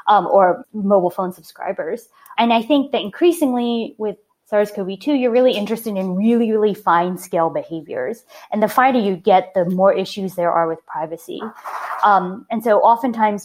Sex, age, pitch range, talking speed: female, 20-39, 175-225 Hz, 165 wpm